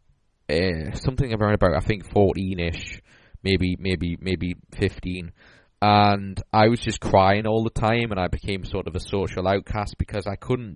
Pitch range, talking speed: 95-110 Hz, 175 wpm